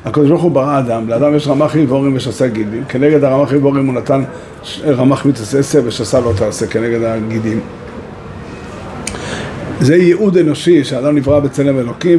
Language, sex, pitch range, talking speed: Hebrew, male, 125-160 Hz, 150 wpm